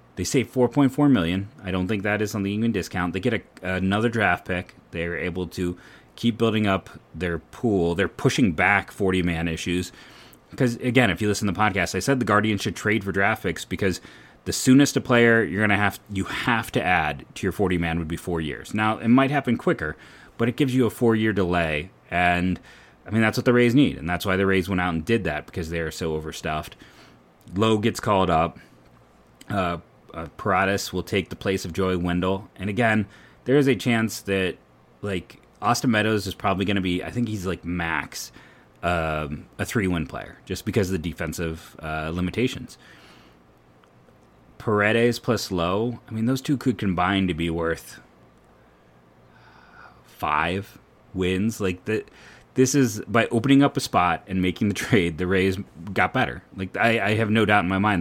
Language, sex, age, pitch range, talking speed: English, male, 30-49, 85-115 Hz, 200 wpm